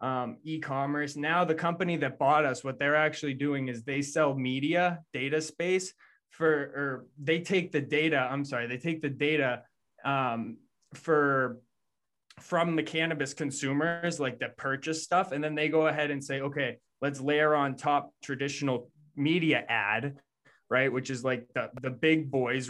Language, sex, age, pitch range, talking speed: English, male, 20-39, 130-155 Hz, 165 wpm